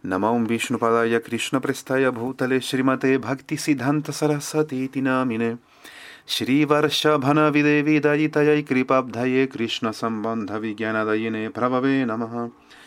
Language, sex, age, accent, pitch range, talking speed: Spanish, male, 30-49, Indian, 120-150 Hz, 105 wpm